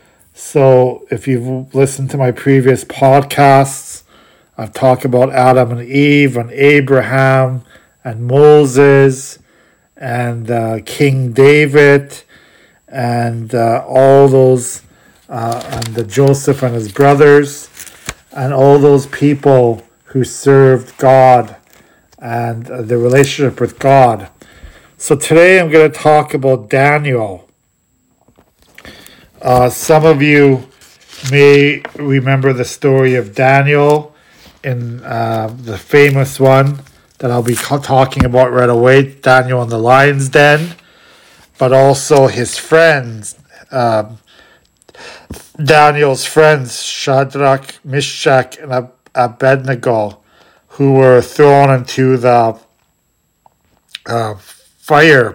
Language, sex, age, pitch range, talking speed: English, male, 50-69, 120-140 Hz, 105 wpm